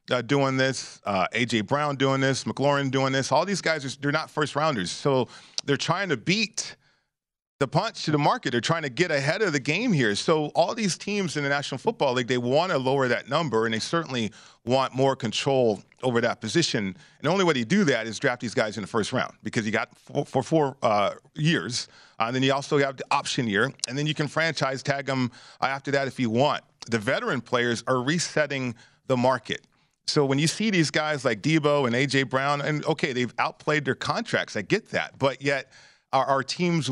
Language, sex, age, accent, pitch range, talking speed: English, male, 40-59, American, 125-150 Hz, 220 wpm